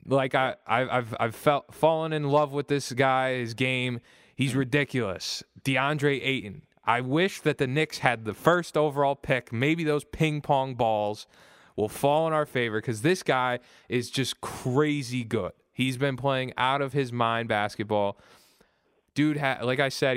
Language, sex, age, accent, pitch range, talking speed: English, male, 20-39, American, 110-140 Hz, 170 wpm